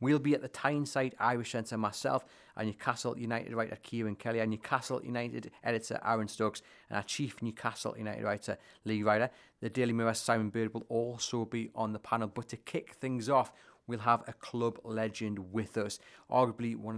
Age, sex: 30-49, male